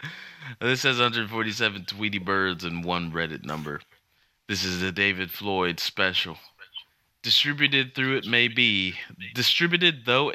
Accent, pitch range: American, 85-105 Hz